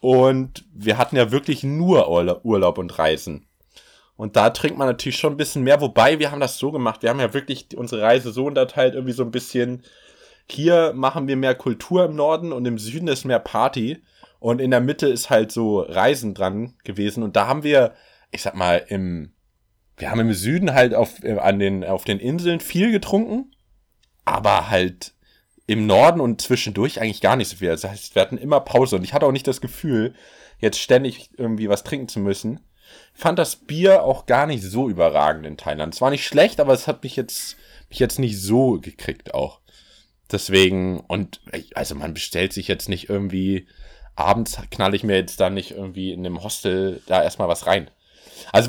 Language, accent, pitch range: German, German, 100-140 Hz